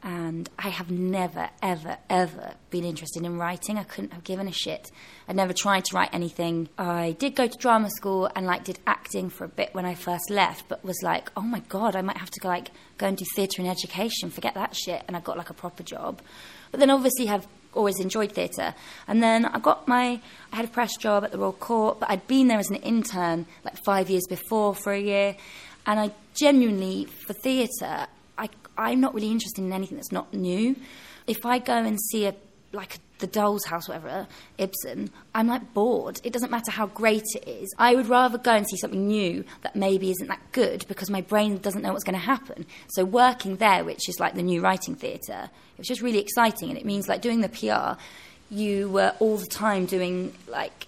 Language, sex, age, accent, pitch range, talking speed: English, female, 20-39, British, 185-225 Hz, 225 wpm